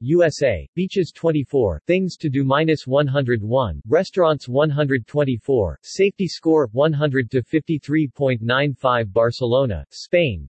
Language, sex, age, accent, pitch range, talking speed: English, male, 40-59, American, 125-155 Hz, 80 wpm